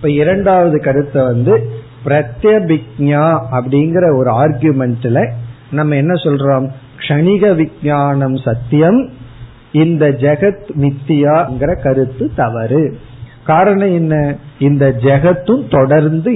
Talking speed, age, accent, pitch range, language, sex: 55 wpm, 50-69, native, 125-160 Hz, Tamil, male